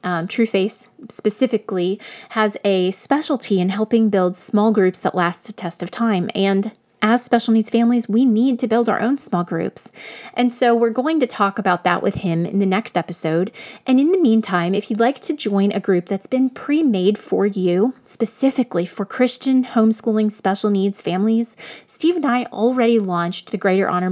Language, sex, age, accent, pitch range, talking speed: English, female, 30-49, American, 190-235 Hz, 190 wpm